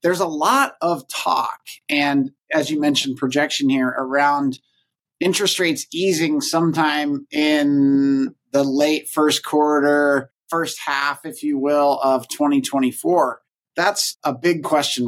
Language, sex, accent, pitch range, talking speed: English, male, American, 140-170 Hz, 125 wpm